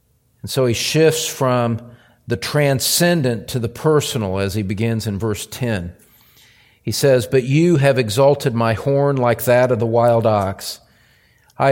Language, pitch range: English, 115-150 Hz